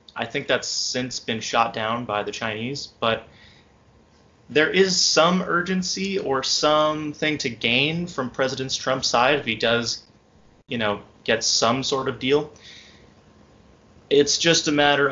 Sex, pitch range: male, 110-140 Hz